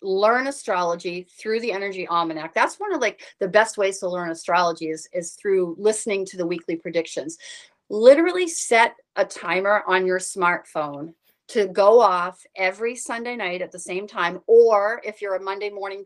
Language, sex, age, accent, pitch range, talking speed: English, female, 40-59, American, 190-240 Hz, 175 wpm